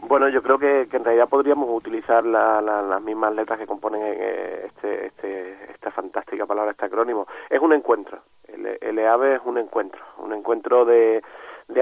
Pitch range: 110-180 Hz